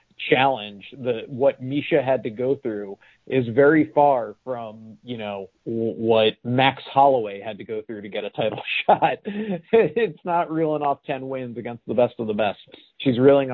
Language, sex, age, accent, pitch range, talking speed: English, male, 30-49, American, 115-135 Hz, 175 wpm